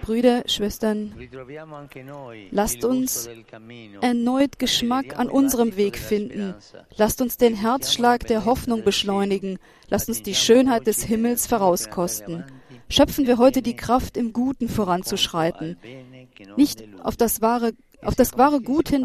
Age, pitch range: 40-59, 175-245 Hz